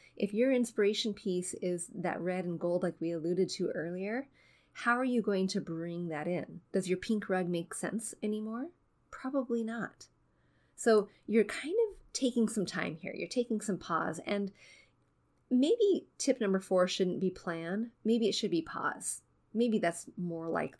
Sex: female